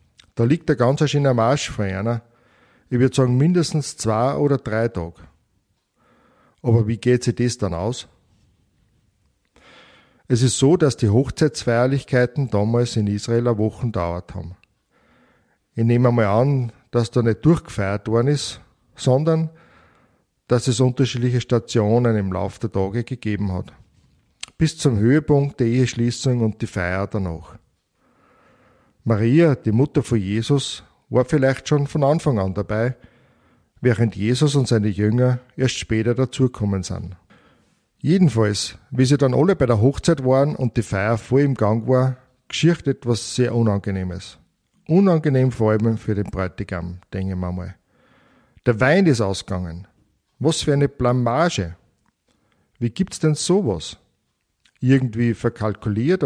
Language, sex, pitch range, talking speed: German, male, 105-135 Hz, 140 wpm